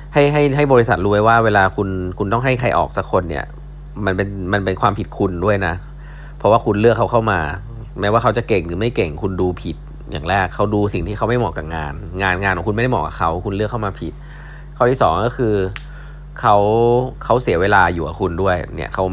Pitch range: 90-120 Hz